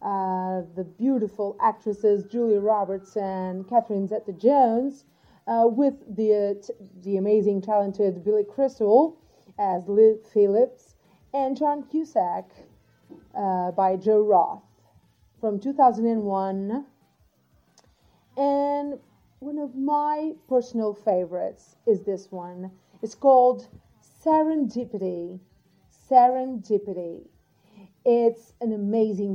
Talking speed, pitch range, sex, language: 90 wpm, 195-245 Hz, female, English